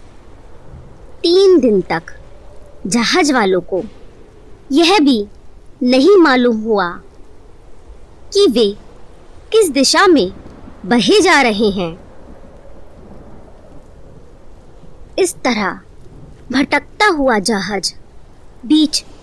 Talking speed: 80 wpm